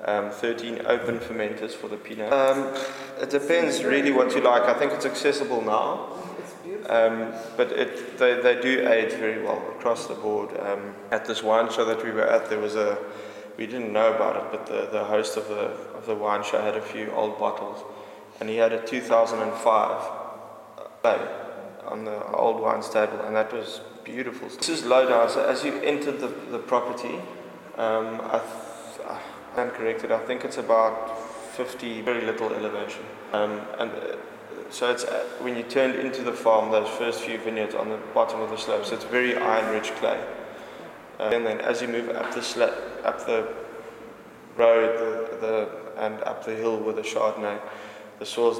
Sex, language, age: male, English, 20-39